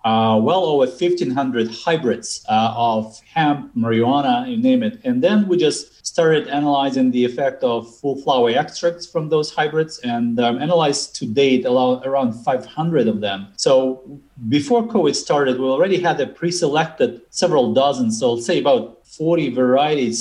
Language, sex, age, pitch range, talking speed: English, male, 30-49, 125-175 Hz, 165 wpm